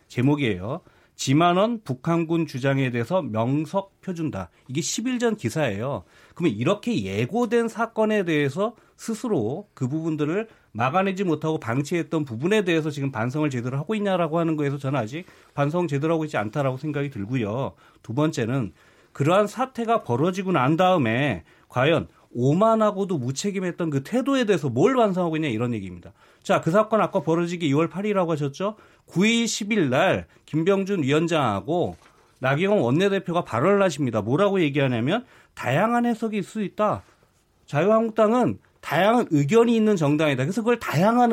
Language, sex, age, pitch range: Korean, male, 30-49, 140-210 Hz